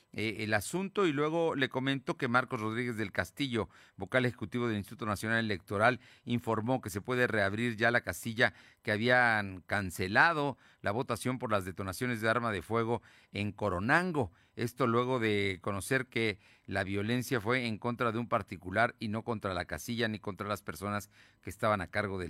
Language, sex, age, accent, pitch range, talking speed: Spanish, male, 40-59, Mexican, 100-125 Hz, 180 wpm